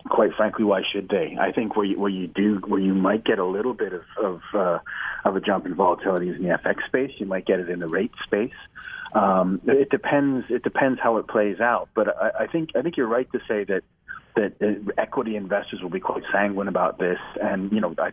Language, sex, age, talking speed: English, male, 40-59, 245 wpm